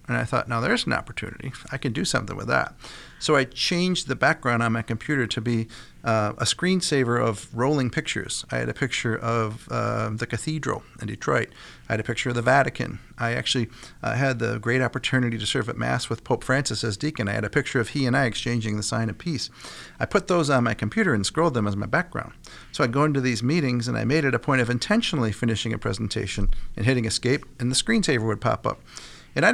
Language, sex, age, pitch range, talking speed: English, male, 40-59, 110-140 Hz, 235 wpm